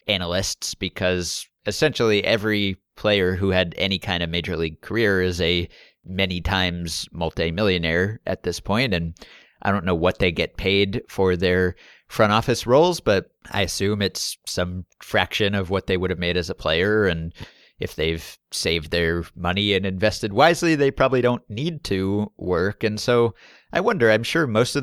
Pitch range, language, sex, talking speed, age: 90-110 Hz, English, male, 175 wpm, 30-49